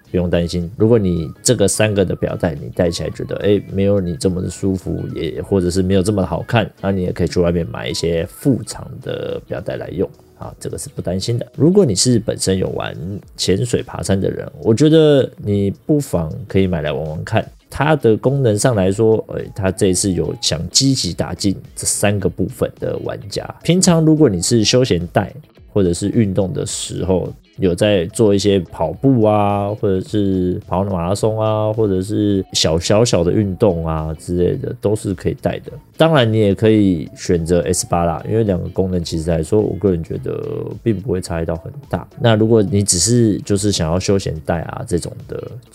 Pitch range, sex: 90-115 Hz, male